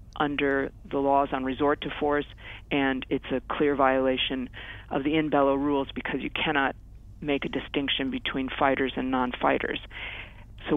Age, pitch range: 40-59, 130-160 Hz